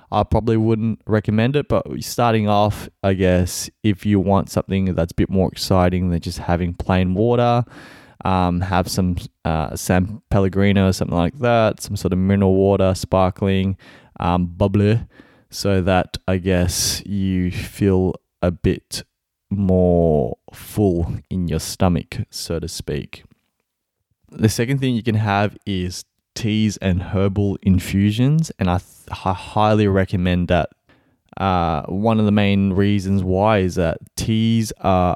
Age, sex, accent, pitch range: 20-39, male, Australian, 90-105 Hz